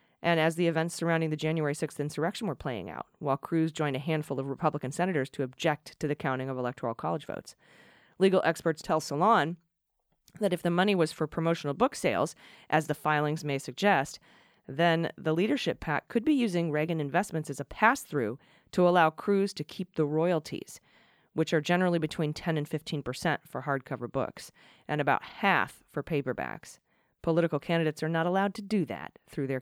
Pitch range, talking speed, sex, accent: 145-175 Hz, 190 wpm, female, American